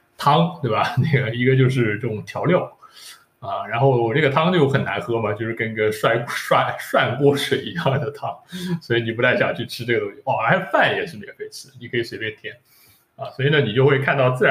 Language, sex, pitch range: Chinese, male, 120-160 Hz